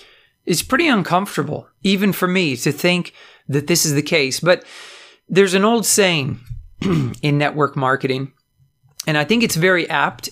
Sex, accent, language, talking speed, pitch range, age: male, American, English, 155 wpm, 145-205 Hz, 40-59